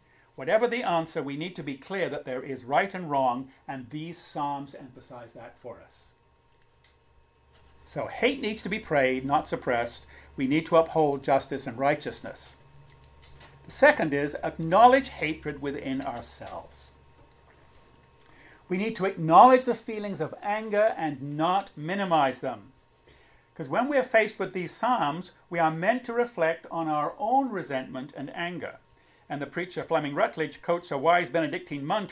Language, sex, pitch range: English, male, 135-185 Hz